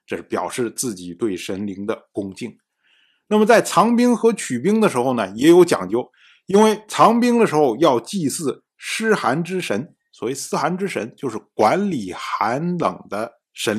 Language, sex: Chinese, male